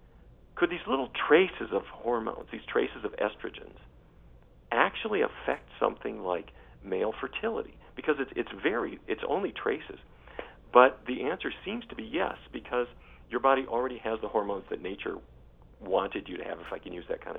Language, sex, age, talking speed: English, male, 50-69, 170 wpm